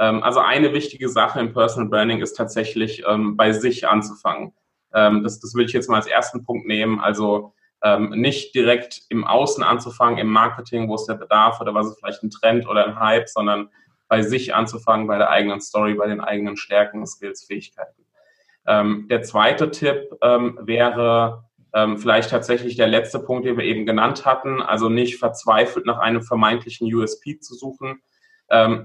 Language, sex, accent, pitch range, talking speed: German, male, German, 110-125 Hz, 180 wpm